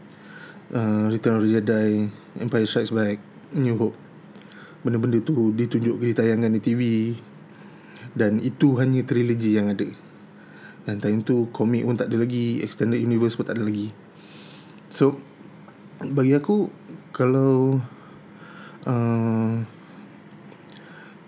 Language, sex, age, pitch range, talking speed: Malay, male, 20-39, 110-140 Hz, 115 wpm